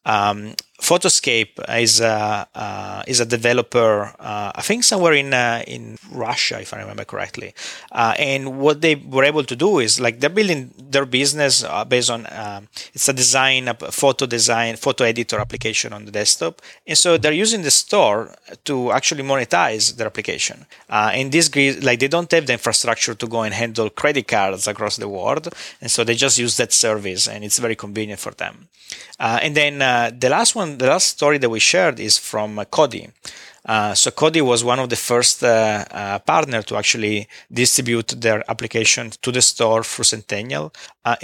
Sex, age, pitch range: male, 30-49, 110-135 Hz